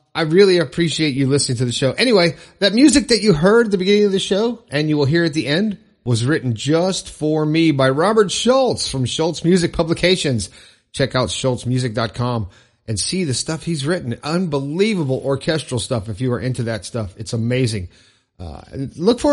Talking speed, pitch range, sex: 195 wpm, 130-190 Hz, male